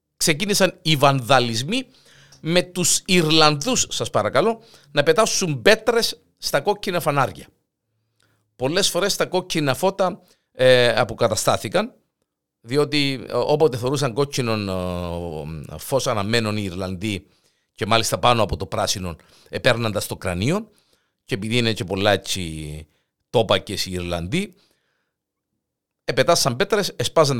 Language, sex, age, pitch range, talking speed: Greek, male, 50-69, 120-185 Hz, 105 wpm